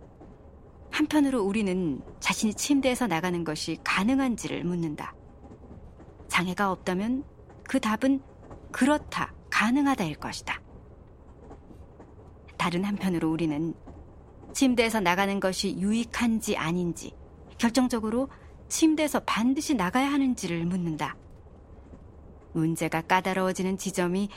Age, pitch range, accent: 40-59, 160-230 Hz, native